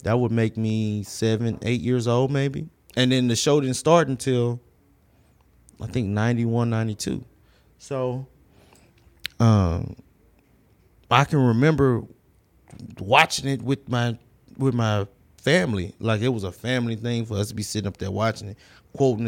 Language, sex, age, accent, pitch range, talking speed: English, male, 20-39, American, 105-125 Hz, 150 wpm